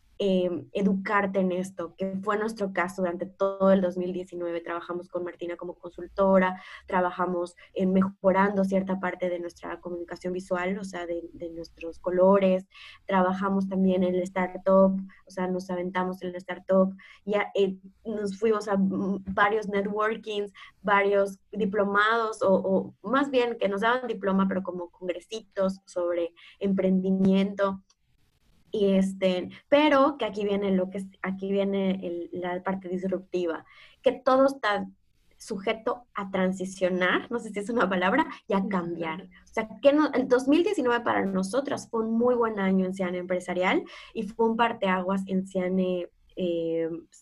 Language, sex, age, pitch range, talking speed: Spanish, female, 20-39, 180-205 Hz, 150 wpm